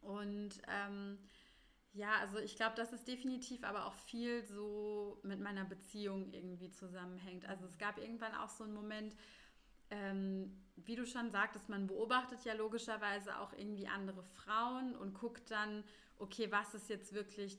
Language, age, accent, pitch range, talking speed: German, 30-49, German, 195-220 Hz, 160 wpm